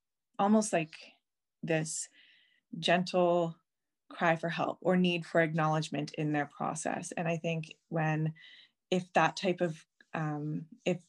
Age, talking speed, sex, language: 20-39, 130 wpm, female, English